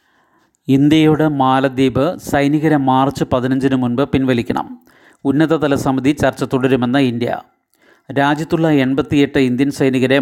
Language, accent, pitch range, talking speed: Malayalam, native, 130-145 Hz, 95 wpm